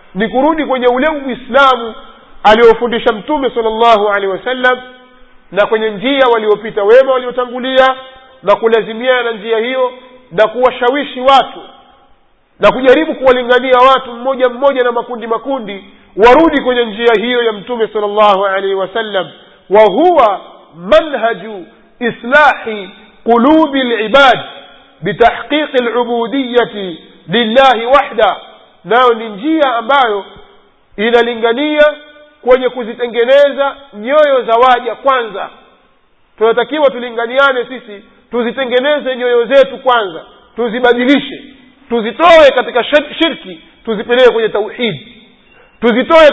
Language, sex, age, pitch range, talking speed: Swahili, male, 50-69, 230-265 Hz, 100 wpm